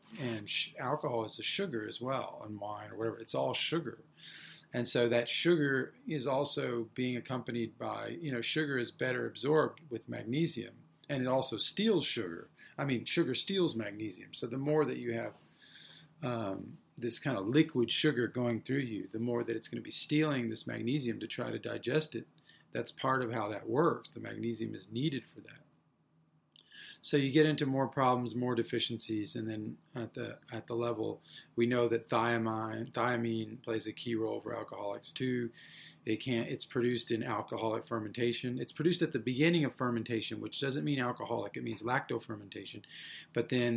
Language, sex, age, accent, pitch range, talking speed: English, male, 40-59, American, 115-130 Hz, 185 wpm